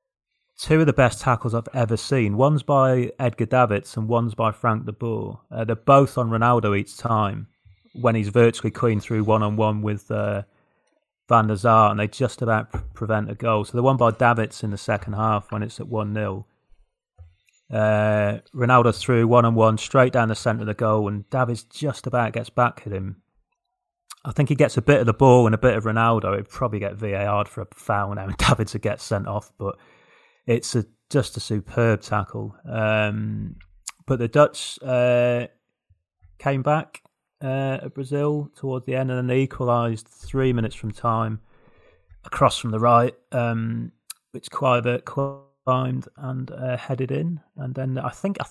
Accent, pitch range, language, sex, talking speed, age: British, 110-130 Hz, English, male, 185 wpm, 30-49